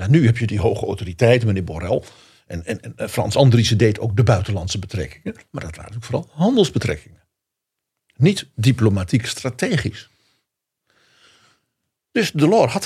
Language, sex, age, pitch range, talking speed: Dutch, male, 50-69, 105-145 Hz, 135 wpm